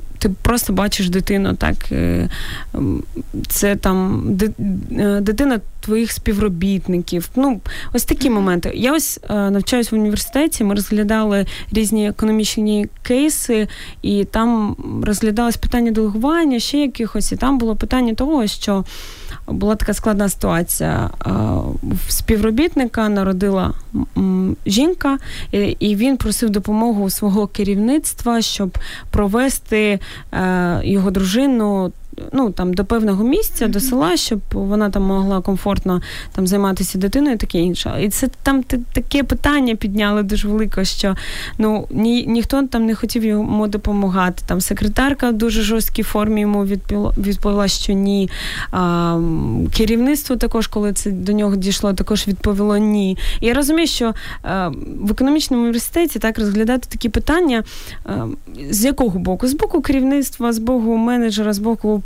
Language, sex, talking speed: Ukrainian, female, 130 wpm